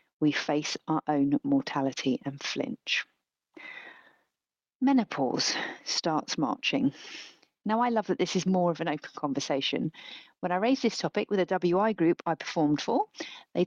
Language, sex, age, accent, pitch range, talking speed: English, female, 40-59, British, 160-240 Hz, 150 wpm